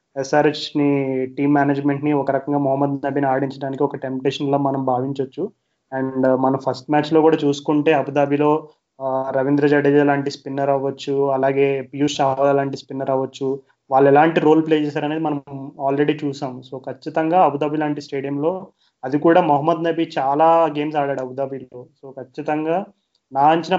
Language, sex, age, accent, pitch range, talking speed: Telugu, male, 20-39, native, 140-160 Hz, 145 wpm